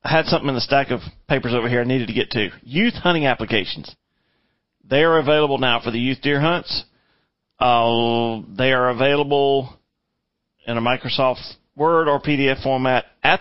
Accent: American